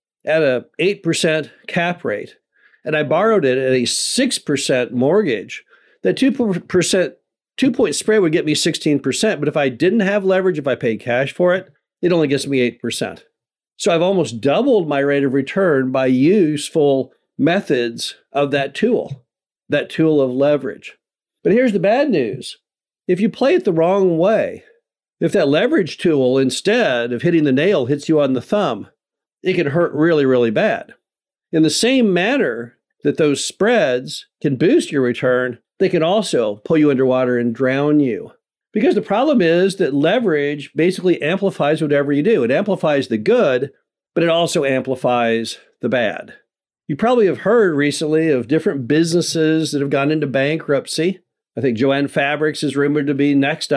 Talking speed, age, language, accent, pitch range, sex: 165 wpm, 50-69, English, American, 140-180 Hz, male